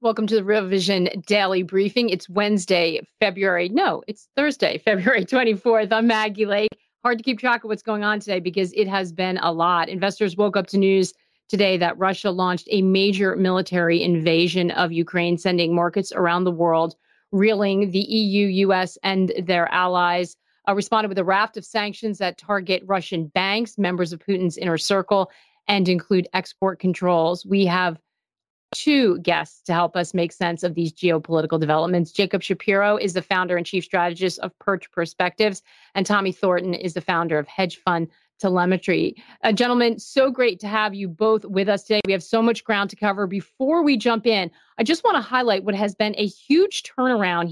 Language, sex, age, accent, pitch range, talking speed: English, female, 40-59, American, 180-215 Hz, 185 wpm